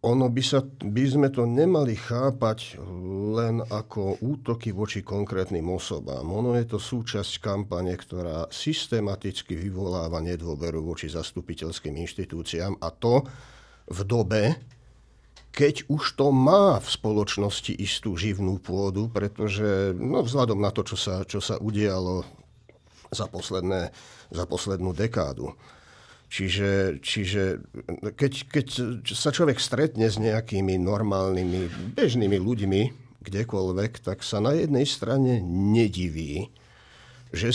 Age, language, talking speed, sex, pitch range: 50-69, Slovak, 120 wpm, male, 95-120 Hz